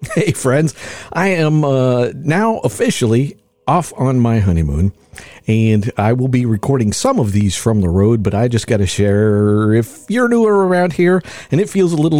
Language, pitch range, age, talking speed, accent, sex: English, 95-135 Hz, 50-69, 185 wpm, American, male